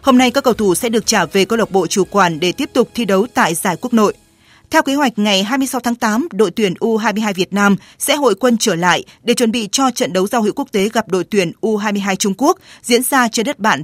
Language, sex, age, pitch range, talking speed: Vietnamese, female, 20-39, 190-245 Hz, 265 wpm